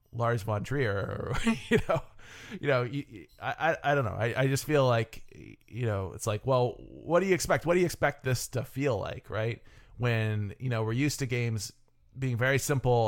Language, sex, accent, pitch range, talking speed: English, male, American, 105-125 Hz, 205 wpm